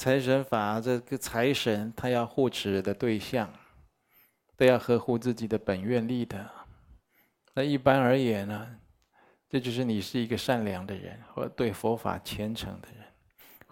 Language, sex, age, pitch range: Chinese, male, 20-39, 105-125 Hz